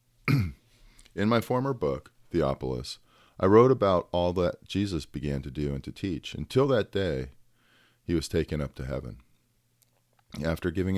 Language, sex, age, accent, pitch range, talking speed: English, male, 40-59, American, 75-105 Hz, 155 wpm